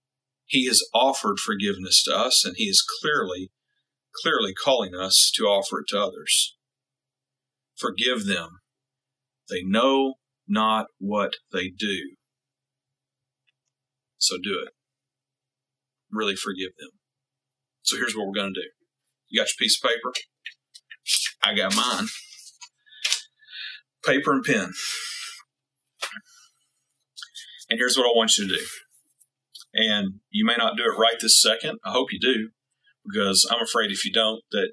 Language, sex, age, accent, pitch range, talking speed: English, male, 40-59, American, 130-205 Hz, 135 wpm